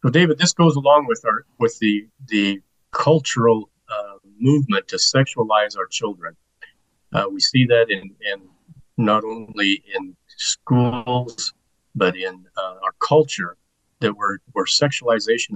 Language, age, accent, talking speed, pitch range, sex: English, 50-69, American, 140 wpm, 110-150 Hz, male